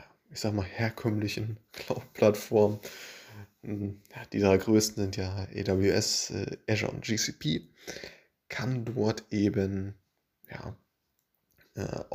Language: German